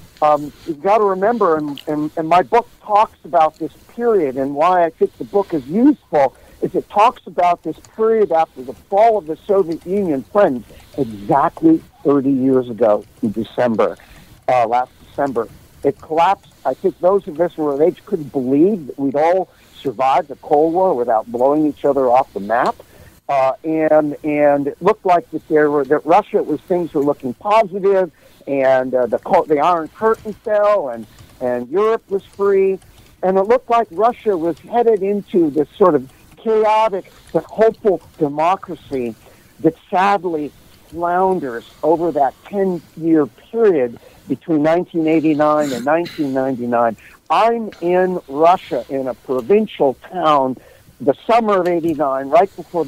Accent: American